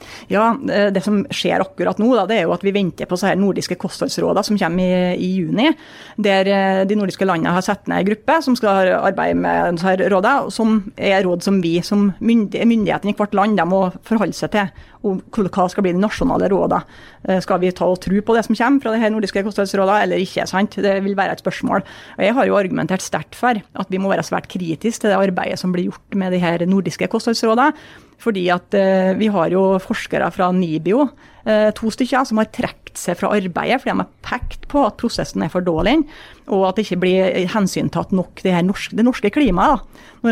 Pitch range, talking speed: 185-225 Hz, 225 wpm